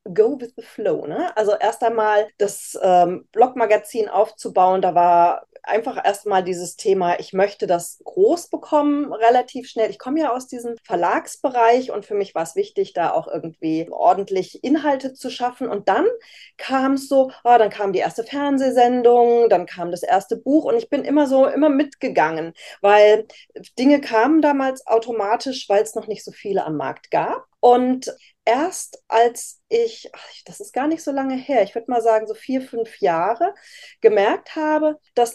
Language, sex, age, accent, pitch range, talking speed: German, female, 20-39, German, 210-295 Hz, 175 wpm